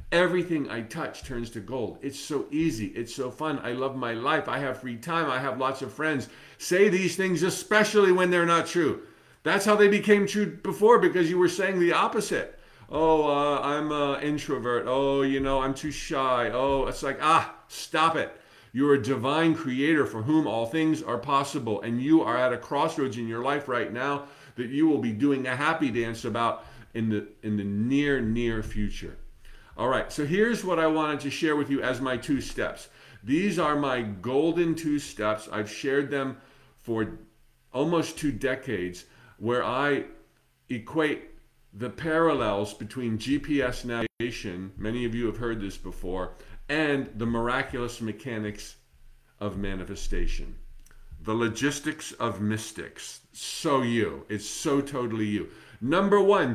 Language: English